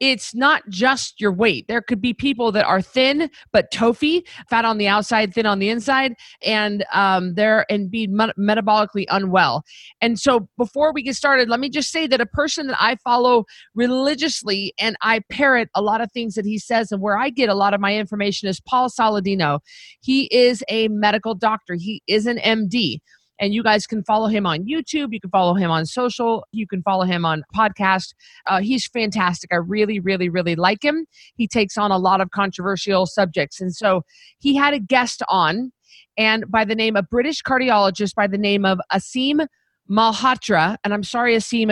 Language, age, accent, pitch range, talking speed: English, 40-59, American, 195-245 Hz, 200 wpm